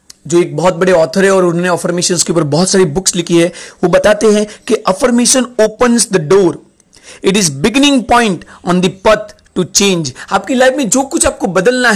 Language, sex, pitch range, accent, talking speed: Hindi, male, 185-245 Hz, native, 195 wpm